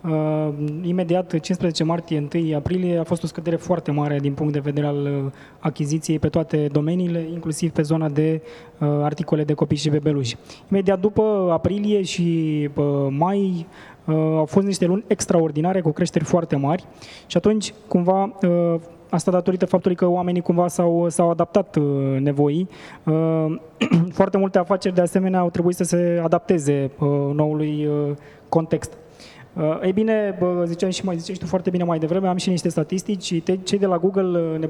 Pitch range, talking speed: 155-180 Hz, 150 wpm